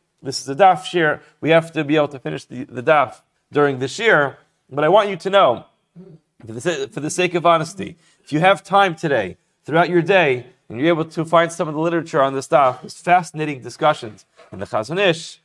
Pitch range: 140-175 Hz